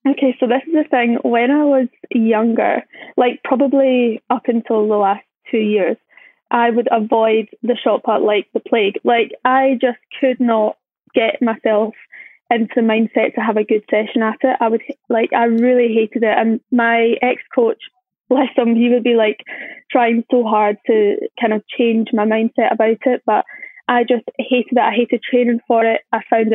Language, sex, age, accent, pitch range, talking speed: English, female, 10-29, British, 225-255 Hz, 190 wpm